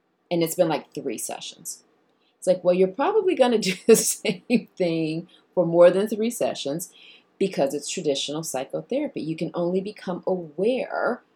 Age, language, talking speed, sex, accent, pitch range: 30-49, English, 165 wpm, female, American, 150-185 Hz